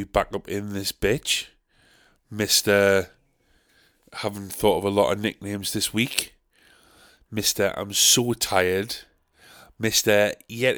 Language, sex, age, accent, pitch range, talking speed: English, male, 20-39, British, 100-125 Hz, 115 wpm